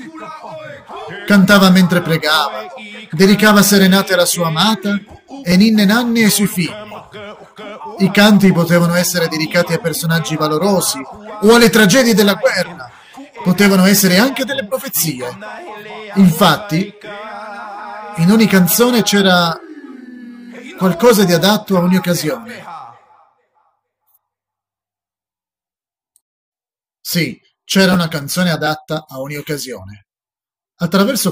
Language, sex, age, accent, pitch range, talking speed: Italian, male, 40-59, native, 150-205 Hz, 100 wpm